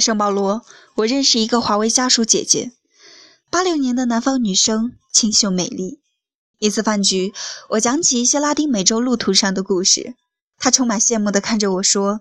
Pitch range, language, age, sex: 200-275 Hz, Chinese, 20-39, female